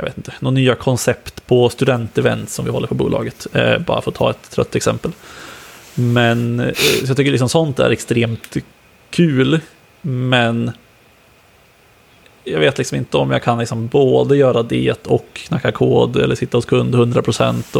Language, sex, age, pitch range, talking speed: Swedish, male, 20-39, 110-130 Hz, 170 wpm